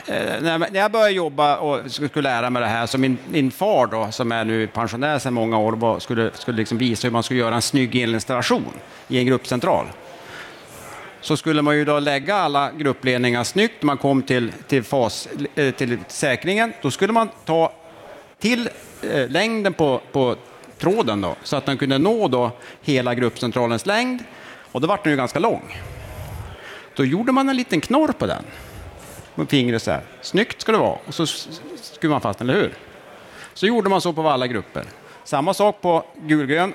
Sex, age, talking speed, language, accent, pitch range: male, 30-49, 170 wpm, Swedish, Norwegian, 120-165 Hz